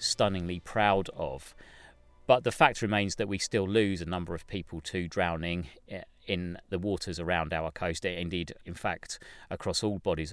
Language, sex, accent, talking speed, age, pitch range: English, male, British, 170 wpm, 40-59, 85-100 Hz